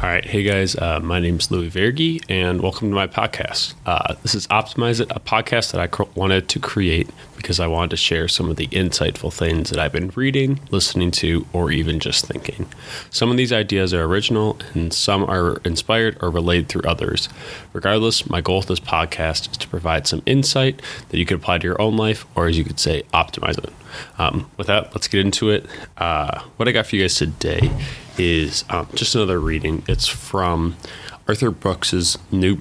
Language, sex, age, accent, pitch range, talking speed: English, male, 20-39, American, 85-110 Hz, 210 wpm